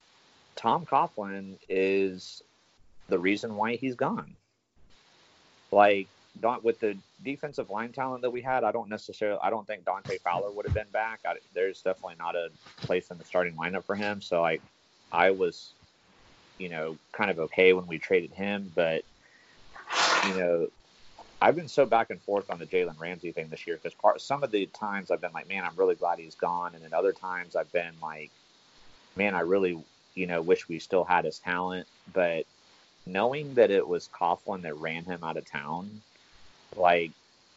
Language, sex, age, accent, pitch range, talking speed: English, male, 30-49, American, 85-115 Hz, 185 wpm